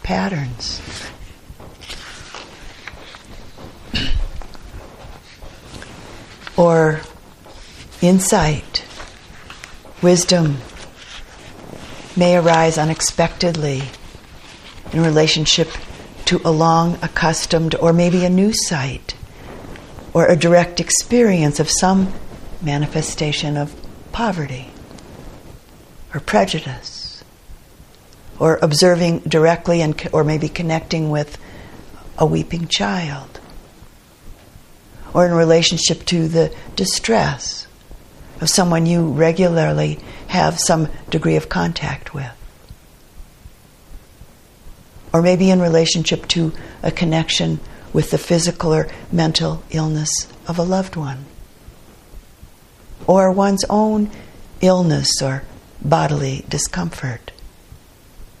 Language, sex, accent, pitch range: English, female, American, 145-175 Hz